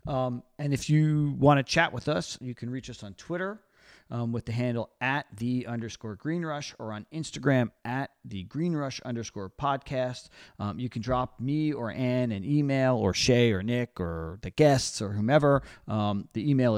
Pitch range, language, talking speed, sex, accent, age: 105-135 Hz, English, 185 wpm, male, American, 40-59